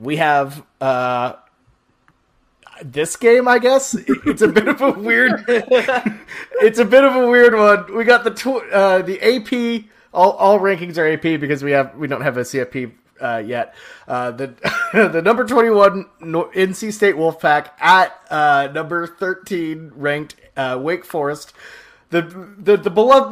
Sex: male